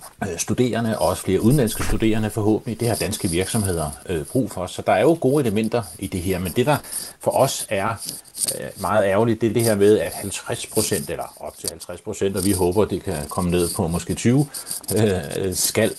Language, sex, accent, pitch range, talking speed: Danish, male, native, 95-115 Hz, 205 wpm